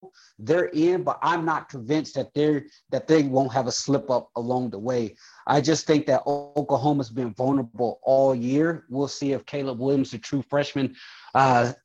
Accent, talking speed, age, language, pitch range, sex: American, 180 wpm, 30-49, English, 130-155 Hz, male